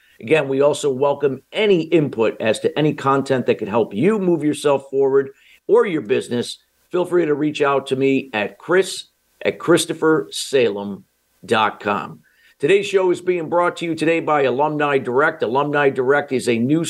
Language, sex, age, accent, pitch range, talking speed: English, male, 50-69, American, 130-165 Hz, 165 wpm